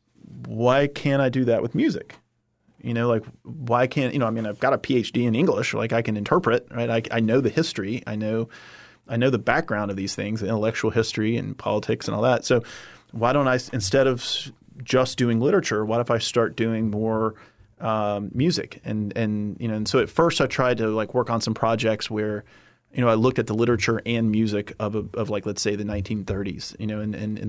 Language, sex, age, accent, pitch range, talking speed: English, male, 30-49, American, 105-120 Hz, 225 wpm